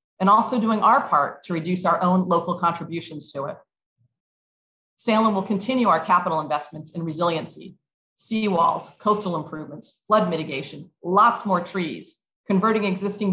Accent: American